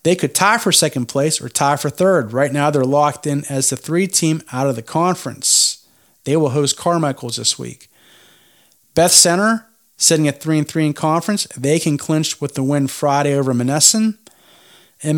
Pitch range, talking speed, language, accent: 135-170 Hz, 190 wpm, English, American